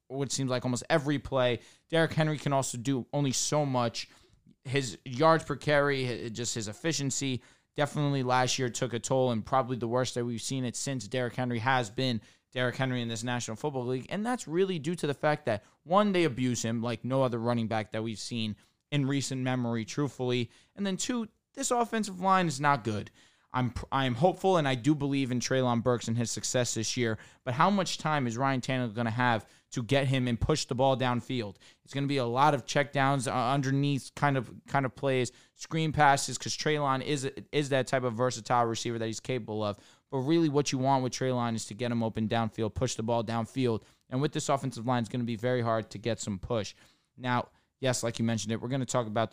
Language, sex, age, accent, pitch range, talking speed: English, male, 20-39, American, 120-145 Hz, 230 wpm